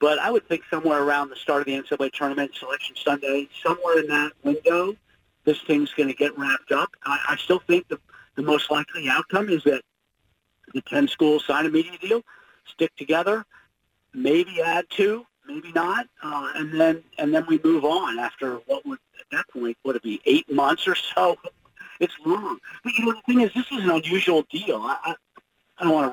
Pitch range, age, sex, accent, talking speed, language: 145-245 Hz, 50-69, male, American, 210 wpm, English